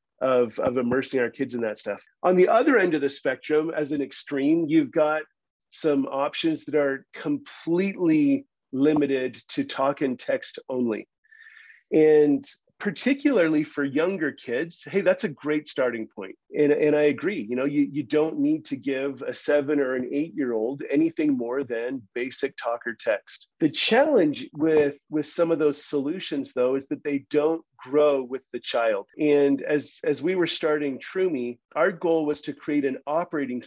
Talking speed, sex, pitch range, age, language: 170 wpm, male, 135-165 Hz, 40-59, English